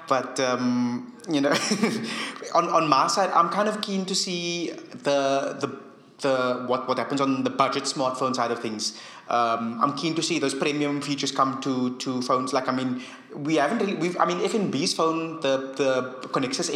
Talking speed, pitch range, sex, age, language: 190 wpm, 125-155 Hz, male, 20-39, English